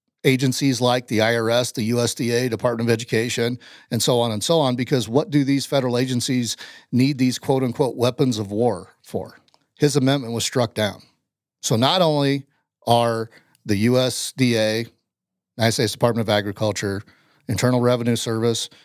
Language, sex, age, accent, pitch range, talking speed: English, male, 40-59, American, 110-145 Hz, 150 wpm